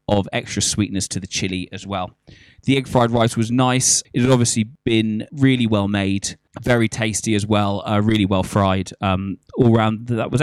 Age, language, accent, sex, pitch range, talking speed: 20-39, English, British, male, 105-125 Hz, 195 wpm